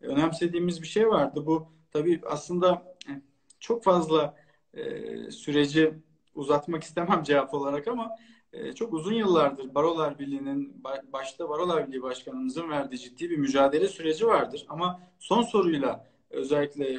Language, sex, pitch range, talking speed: Turkish, male, 145-200 Hz, 125 wpm